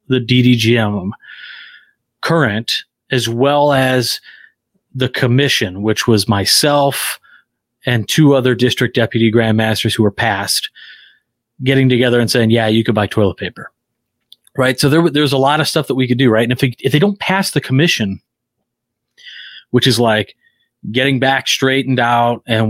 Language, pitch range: English, 115-130 Hz